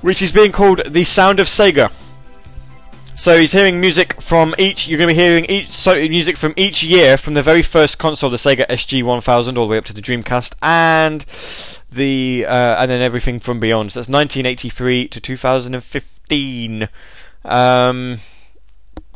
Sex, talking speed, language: male, 175 wpm, English